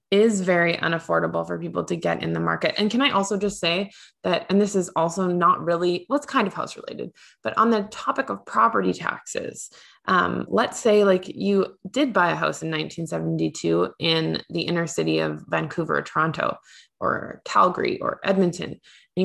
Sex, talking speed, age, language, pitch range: female, 185 wpm, 20-39, English, 160-205 Hz